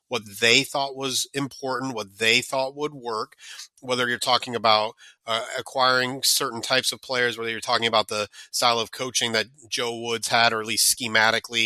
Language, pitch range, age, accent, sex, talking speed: English, 115-145 Hz, 30-49, American, male, 185 wpm